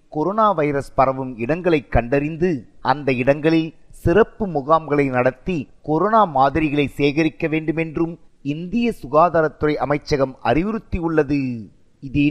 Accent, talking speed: native, 95 wpm